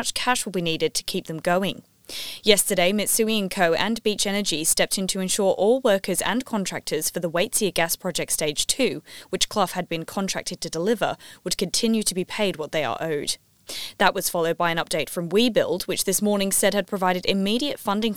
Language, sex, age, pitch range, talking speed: English, female, 10-29, 165-200 Hz, 205 wpm